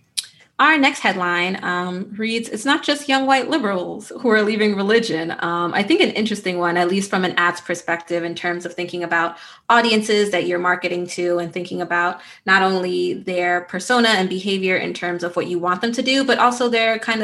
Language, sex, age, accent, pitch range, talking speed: English, female, 20-39, American, 175-215 Hz, 205 wpm